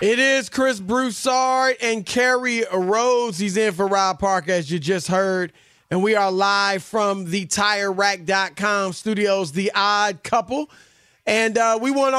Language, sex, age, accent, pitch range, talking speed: English, male, 30-49, American, 190-230 Hz, 155 wpm